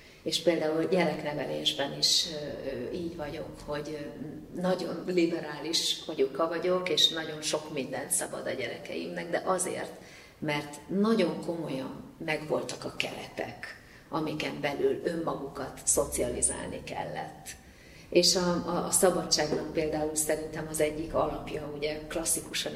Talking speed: 115 wpm